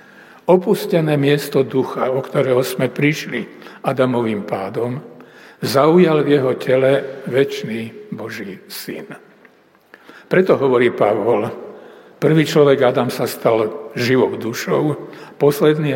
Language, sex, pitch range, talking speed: Slovak, male, 130-160 Hz, 100 wpm